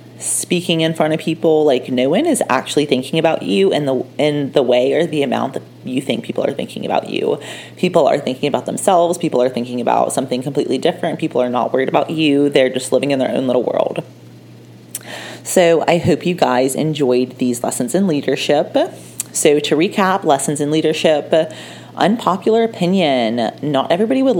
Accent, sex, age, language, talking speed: American, female, 30-49, English, 185 wpm